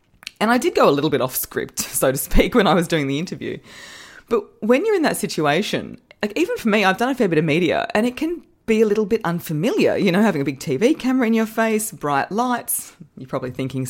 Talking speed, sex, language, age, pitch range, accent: 250 wpm, female, English, 20-39, 150-230 Hz, Australian